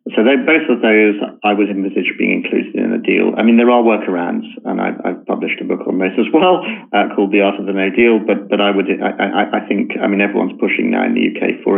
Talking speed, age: 265 wpm, 40-59